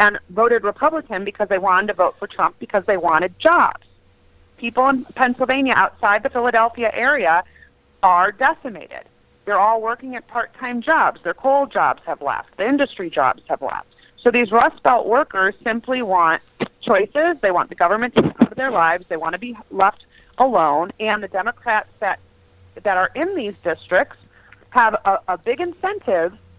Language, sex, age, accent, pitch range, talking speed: English, female, 40-59, American, 195-260 Hz, 170 wpm